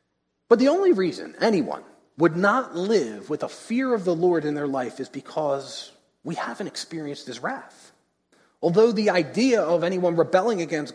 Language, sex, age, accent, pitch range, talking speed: English, male, 40-59, American, 145-185 Hz, 170 wpm